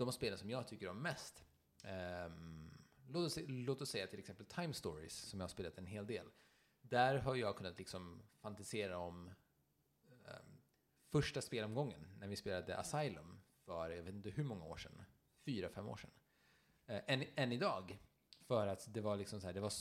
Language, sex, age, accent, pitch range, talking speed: Swedish, male, 30-49, Norwegian, 95-130 Hz, 190 wpm